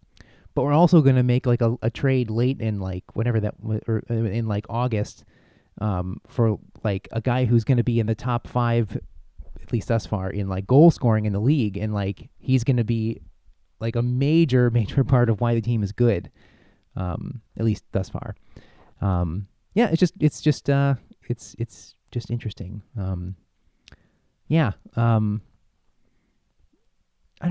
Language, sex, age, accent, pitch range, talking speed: English, male, 30-49, American, 100-130 Hz, 175 wpm